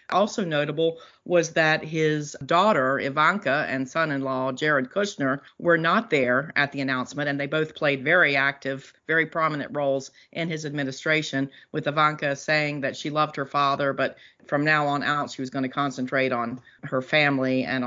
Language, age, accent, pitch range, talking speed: English, 40-59, American, 135-160 Hz, 170 wpm